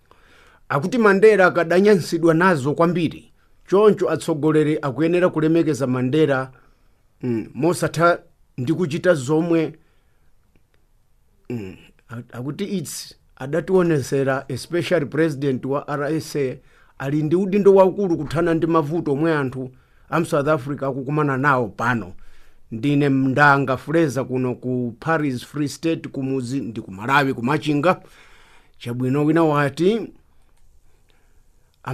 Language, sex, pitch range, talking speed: English, male, 130-170 Hz, 105 wpm